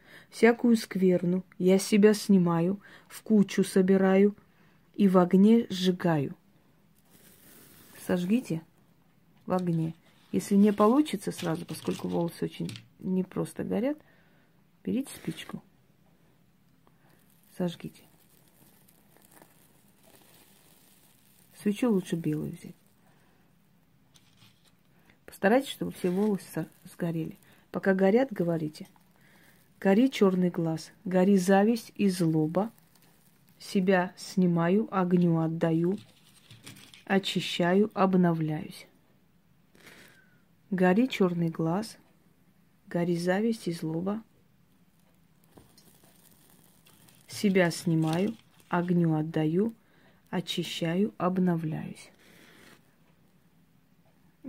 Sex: female